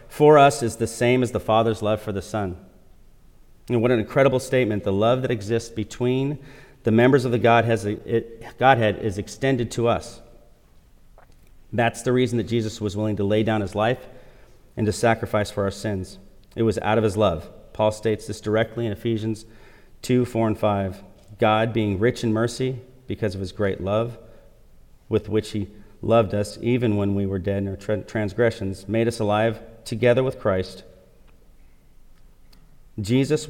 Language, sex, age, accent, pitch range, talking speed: English, male, 40-59, American, 105-120 Hz, 175 wpm